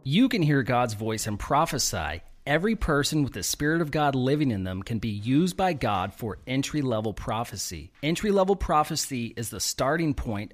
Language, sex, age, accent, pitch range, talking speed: English, male, 30-49, American, 110-150 Hz, 175 wpm